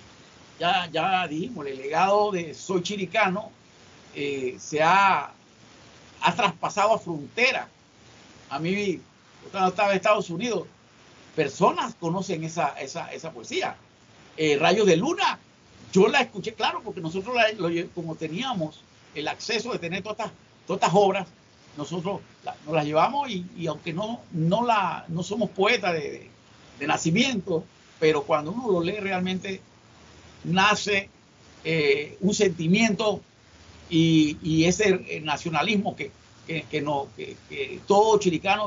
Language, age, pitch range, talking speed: Spanish, 50-69, 165-210 Hz, 140 wpm